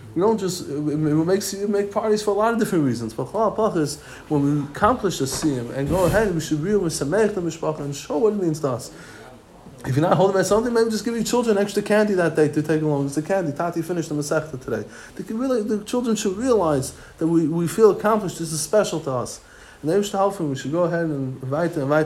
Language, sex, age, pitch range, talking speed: English, male, 20-39, 140-180 Hz, 240 wpm